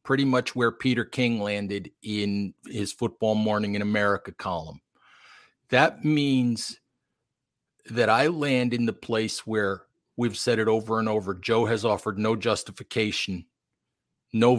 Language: English